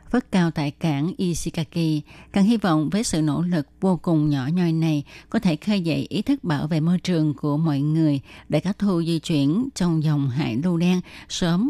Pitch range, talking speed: 150-185 Hz, 210 wpm